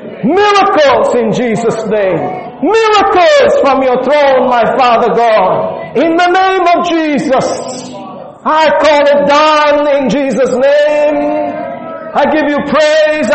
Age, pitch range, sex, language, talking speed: 40-59, 230-320 Hz, male, English, 120 wpm